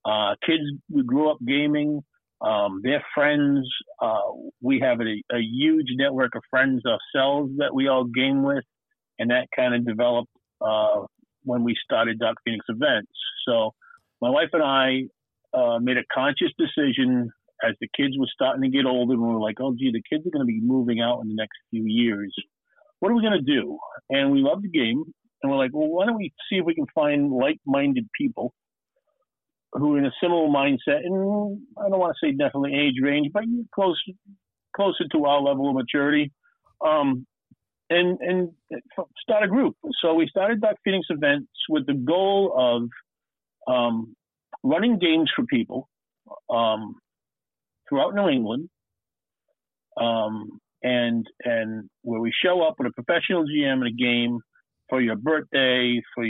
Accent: American